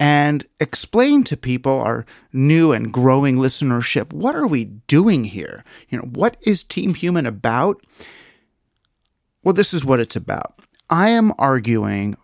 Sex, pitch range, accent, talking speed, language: male, 115-165 Hz, American, 145 wpm, English